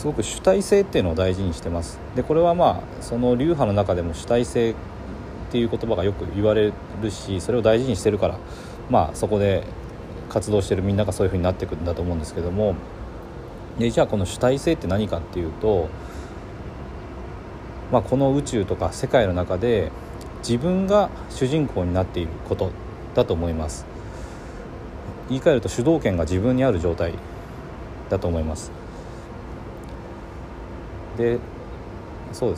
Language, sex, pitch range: Japanese, male, 85-120 Hz